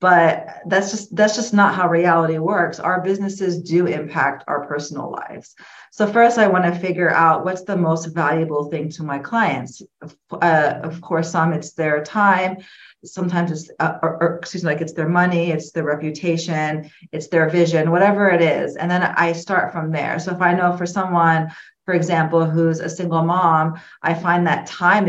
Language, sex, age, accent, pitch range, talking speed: English, female, 40-59, American, 160-185 Hz, 190 wpm